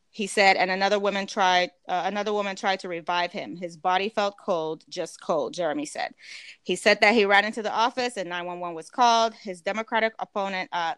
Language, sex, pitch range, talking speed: English, female, 175-205 Hz, 200 wpm